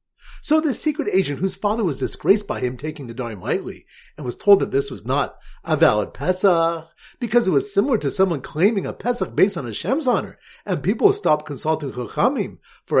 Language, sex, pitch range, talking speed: English, male, 150-210 Hz, 200 wpm